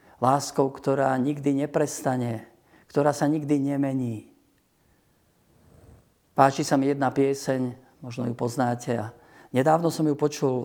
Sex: male